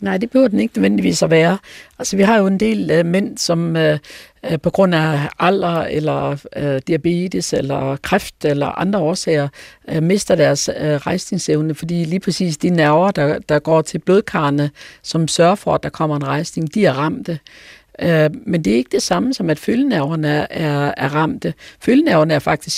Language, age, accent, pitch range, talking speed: Danish, 60-79, native, 155-195 Hz, 175 wpm